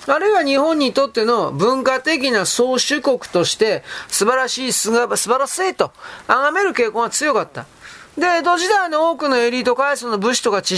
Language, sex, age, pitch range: Japanese, male, 40-59, 220-300 Hz